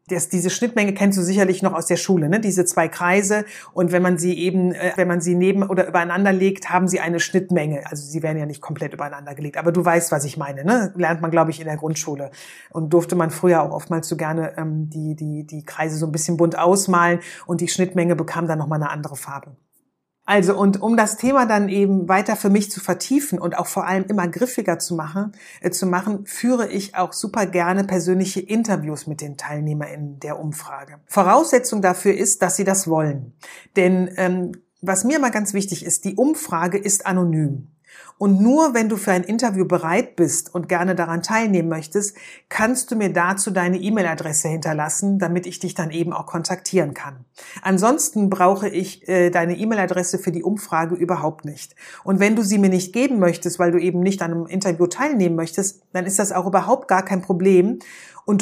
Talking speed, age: 205 wpm, 30-49